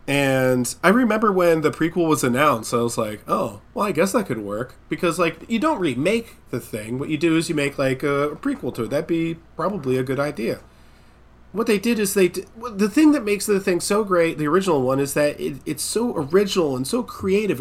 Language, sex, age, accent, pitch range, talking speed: English, male, 30-49, American, 125-180 Hz, 240 wpm